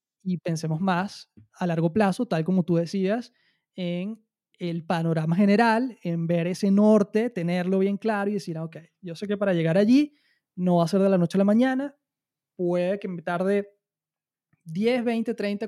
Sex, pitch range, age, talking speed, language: male, 175-215 Hz, 20-39, 185 wpm, Spanish